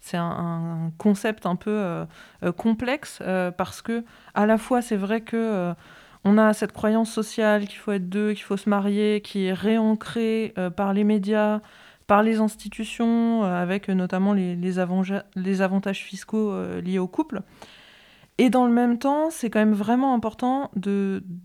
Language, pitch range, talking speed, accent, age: French, 185-220 Hz, 180 wpm, French, 20-39